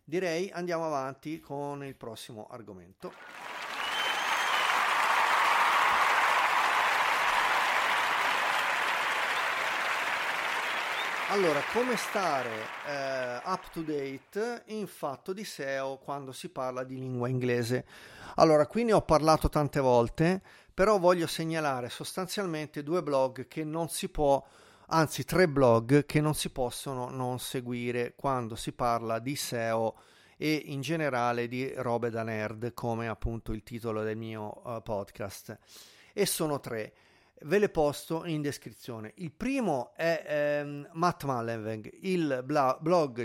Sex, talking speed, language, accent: male, 120 wpm, Italian, native